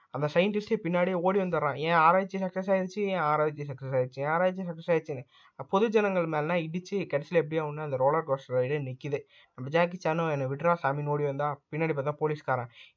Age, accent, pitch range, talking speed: 20-39, native, 140-175 Hz, 175 wpm